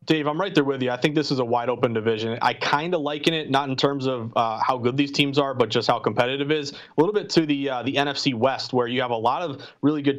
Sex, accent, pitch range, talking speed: male, American, 130-155 Hz, 305 wpm